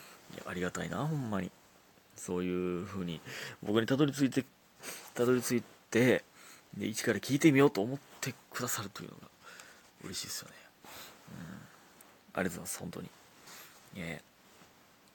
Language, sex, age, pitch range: Japanese, male, 30-49, 95-155 Hz